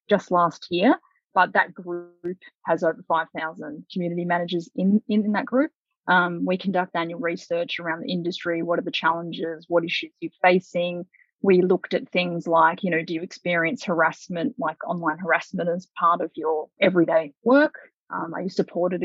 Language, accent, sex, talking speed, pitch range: English, Australian, female, 180 wpm, 170-200 Hz